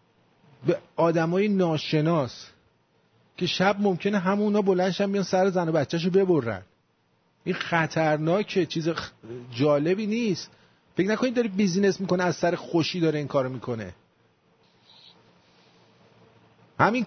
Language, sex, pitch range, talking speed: English, male, 165-210 Hz, 125 wpm